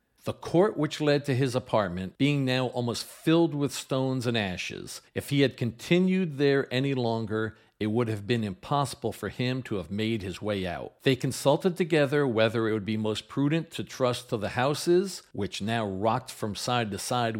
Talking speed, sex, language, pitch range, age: 195 wpm, male, English, 110-145 Hz, 50-69